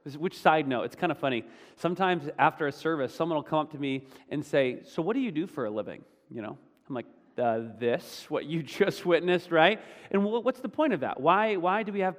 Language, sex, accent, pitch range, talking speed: English, male, American, 130-175 Hz, 240 wpm